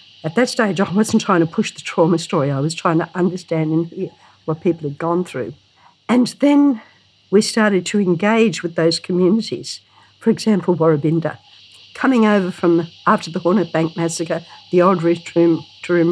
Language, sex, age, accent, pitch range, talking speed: English, female, 60-79, Australian, 160-205 Hz, 170 wpm